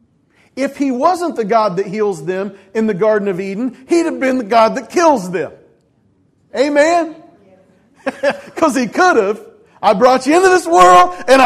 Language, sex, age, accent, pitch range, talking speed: English, male, 40-59, American, 225-320 Hz, 175 wpm